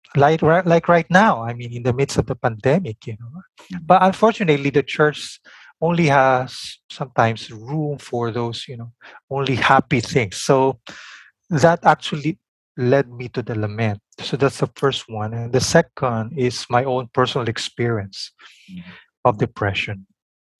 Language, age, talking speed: English, 20-39, 150 wpm